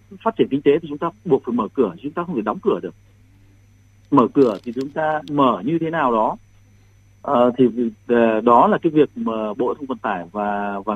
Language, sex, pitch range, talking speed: Vietnamese, male, 105-145 Hz, 225 wpm